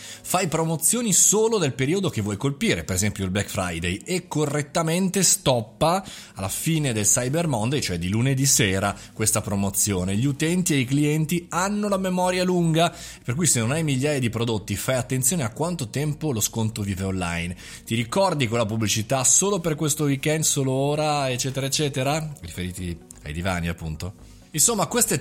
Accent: native